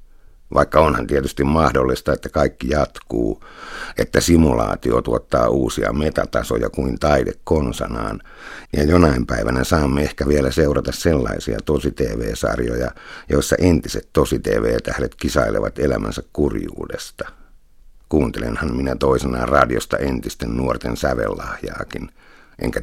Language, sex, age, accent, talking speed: Finnish, male, 60-79, native, 100 wpm